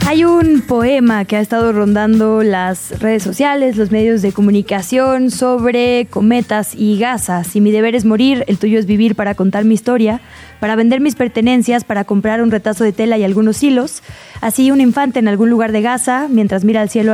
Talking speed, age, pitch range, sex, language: 195 wpm, 20-39, 205-240 Hz, female, Spanish